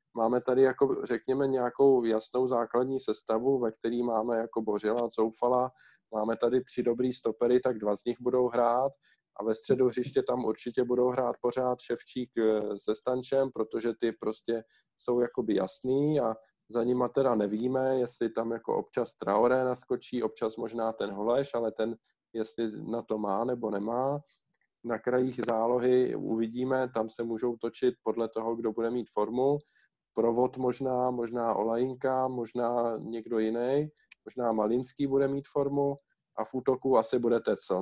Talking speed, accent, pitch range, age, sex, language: 155 wpm, native, 115-130 Hz, 20-39, male, Czech